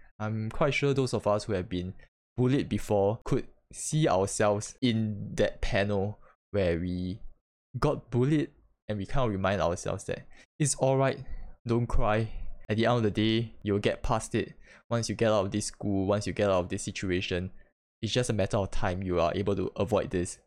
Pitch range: 100-135 Hz